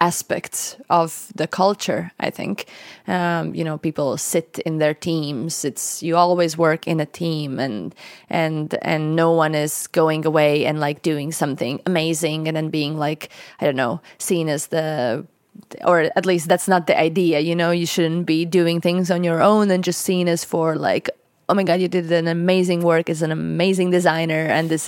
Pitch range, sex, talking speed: 160-180 Hz, female, 195 wpm